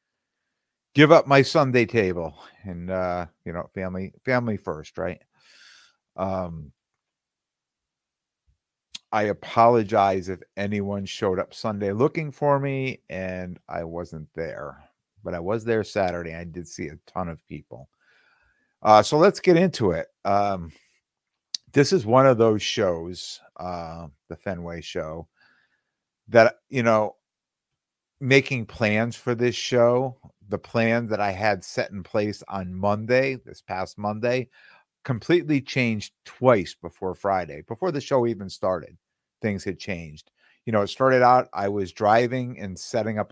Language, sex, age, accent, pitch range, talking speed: English, male, 50-69, American, 90-120 Hz, 140 wpm